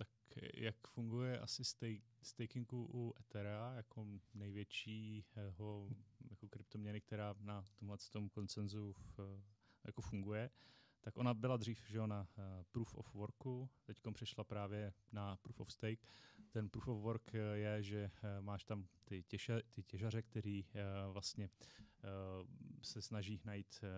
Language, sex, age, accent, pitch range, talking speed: Czech, male, 30-49, native, 100-115 Hz, 125 wpm